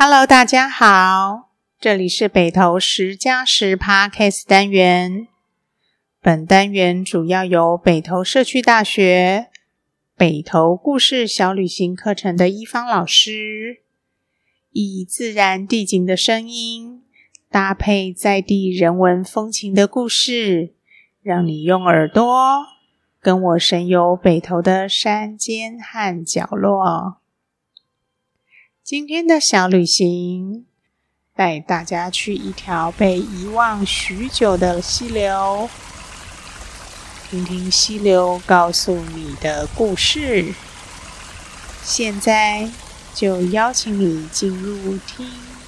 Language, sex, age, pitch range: Chinese, female, 30-49, 180-220 Hz